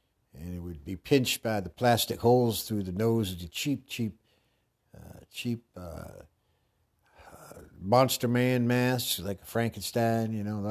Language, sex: English, male